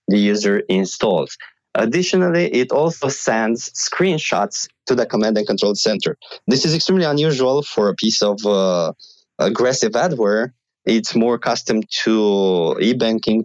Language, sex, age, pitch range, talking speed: English, male, 20-39, 100-120 Hz, 135 wpm